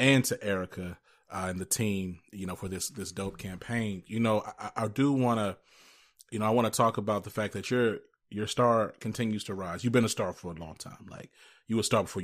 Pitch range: 100-120 Hz